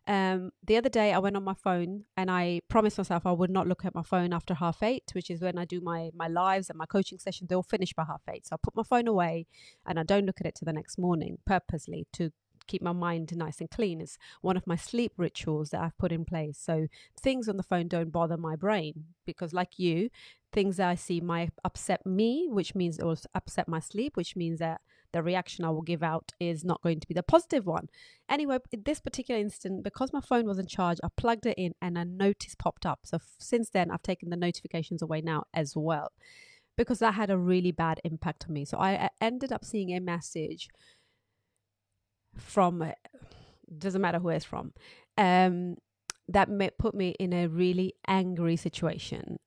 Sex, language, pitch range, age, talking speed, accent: female, English, 165-195 Hz, 30-49, 225 wpm, British